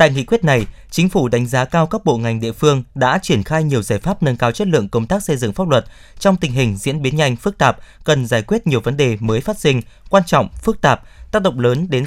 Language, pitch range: Vietnamese, 120-165 Hz